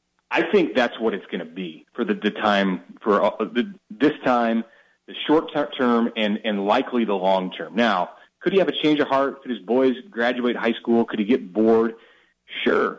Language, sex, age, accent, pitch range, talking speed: English, male, 30-49, American, 95-120 Hz, 210 wpm